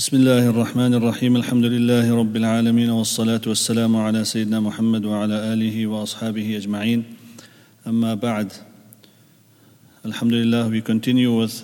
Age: 40-59